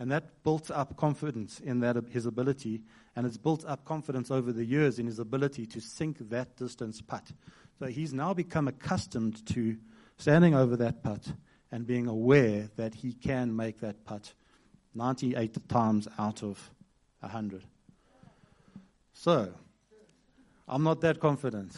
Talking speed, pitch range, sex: 150 wpm, 115-150 Hz, male